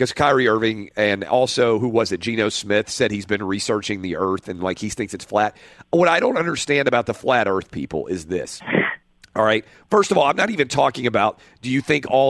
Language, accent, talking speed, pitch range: English, American, 230 wpm, 105-140 Hz